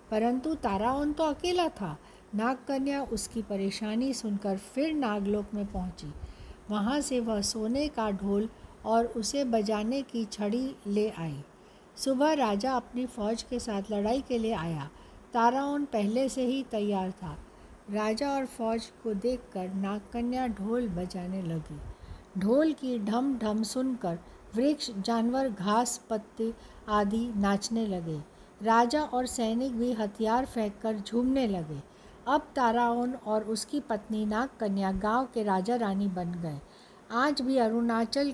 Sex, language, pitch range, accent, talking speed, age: female, Hindi, 205-250 Hz, native, 135 wpm, 60-79